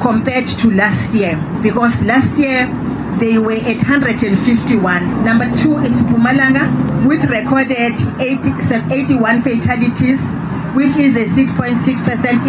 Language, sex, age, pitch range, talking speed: English, female, 40-59, 220-265 Hz, 110 wpm